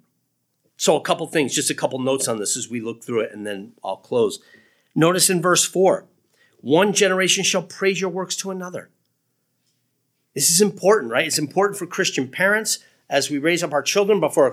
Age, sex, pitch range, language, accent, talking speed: 40-59, male, 150-205 Hz, English, American, 200 wpm